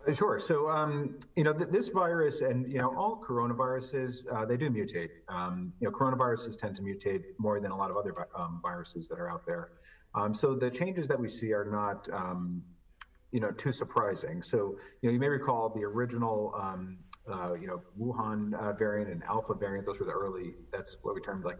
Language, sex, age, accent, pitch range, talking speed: English, male, 30-49, American, 90-120 Hz, 210 wpm